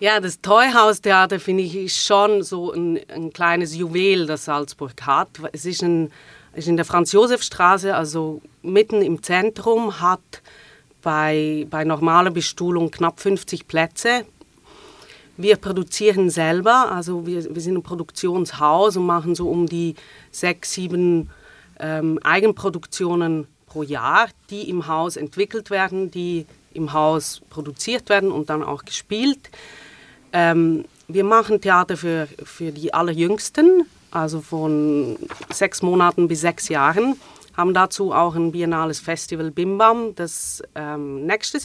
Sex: female